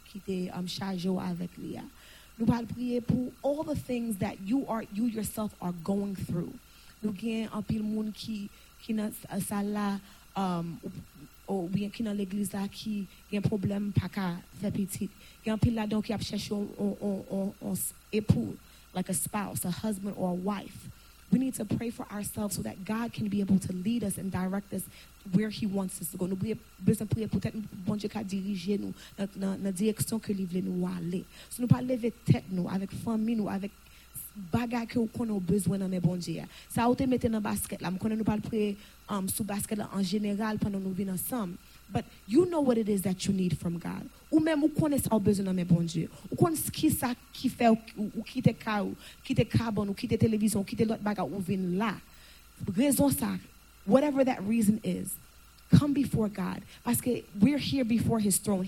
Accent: American